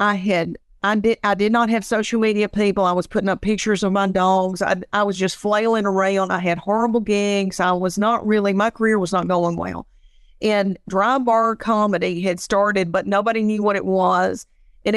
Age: 50-69